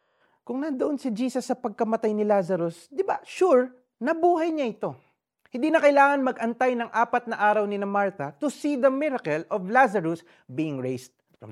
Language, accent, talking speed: Filipino, native, 175 wpm